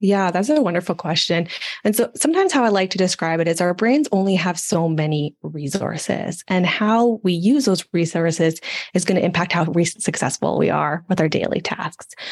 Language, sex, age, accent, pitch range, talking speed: English, female, 20-39, American, 160-205 Hz, 195 wpm